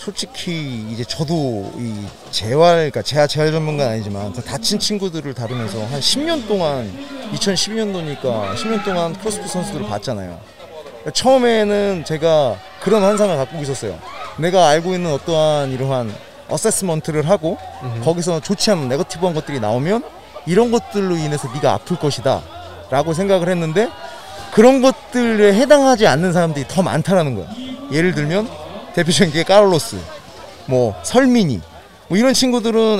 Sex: male